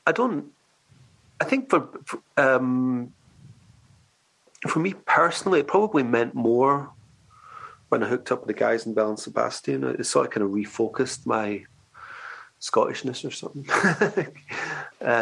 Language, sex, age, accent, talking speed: English, male, 40-59, British, 140 wpm